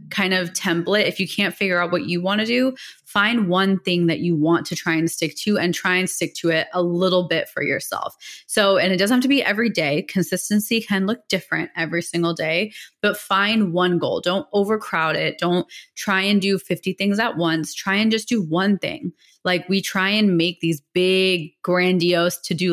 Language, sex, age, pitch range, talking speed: English, female, 20-39, 170-210 Hz, 215 wpm